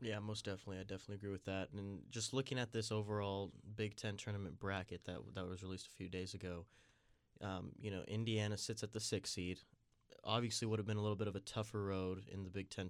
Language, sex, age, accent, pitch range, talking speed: English, male, 20-39, American, 100-115 Hz, 235 wpm